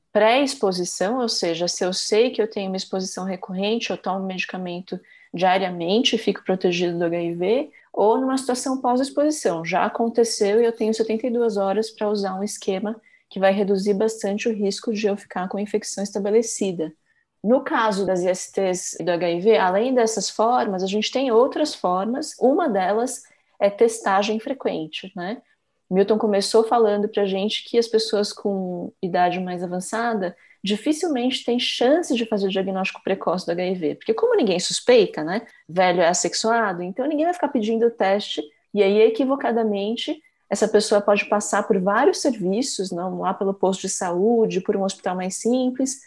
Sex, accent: female, Brazilian